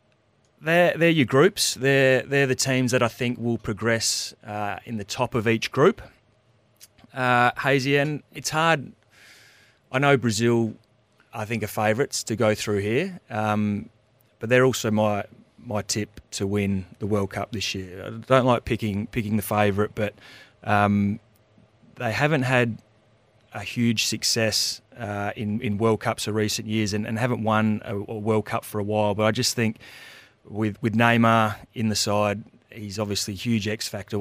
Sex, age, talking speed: male, 30-49, 185 wpm